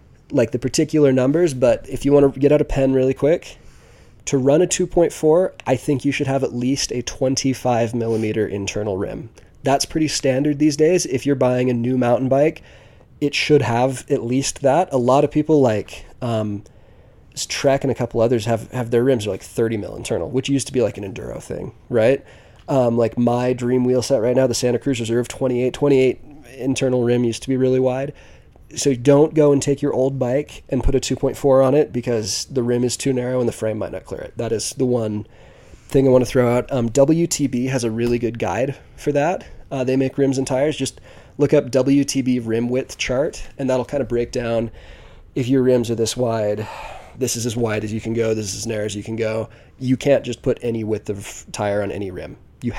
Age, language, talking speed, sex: 20-39, English, 225 wpm, male